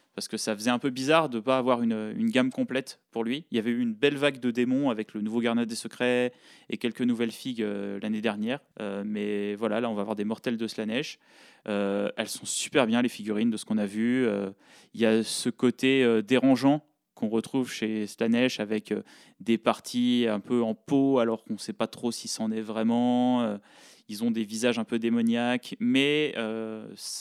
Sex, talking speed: male, 225 wpm